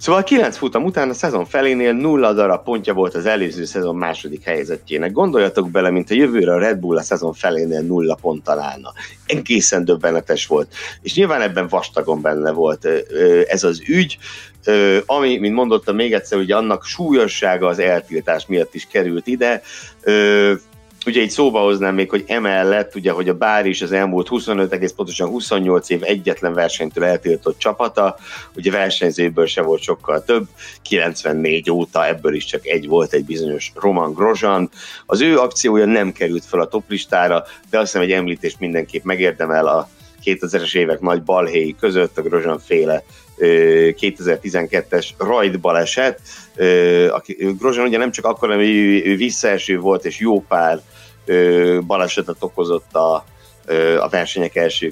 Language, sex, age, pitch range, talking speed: Hungarian, male, 60-79, 85-140 Hz, 155 wpm